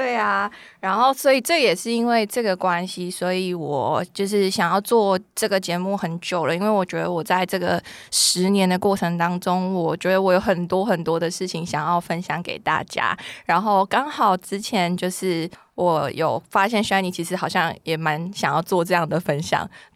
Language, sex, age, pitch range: Chinese, female, 20-39, 170-205 Hz